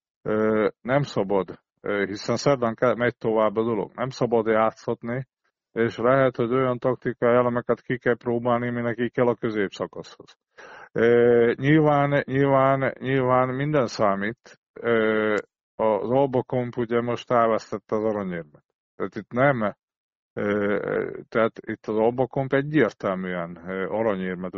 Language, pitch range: Hungarian, 110-130 Hz